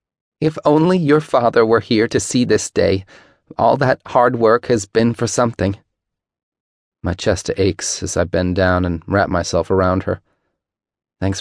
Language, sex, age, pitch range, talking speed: English, male, 30-49, 90-105 Hz, 165 wpm